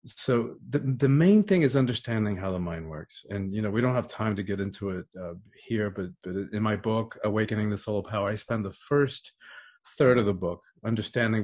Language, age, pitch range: English, 50-69, 100-130 Hz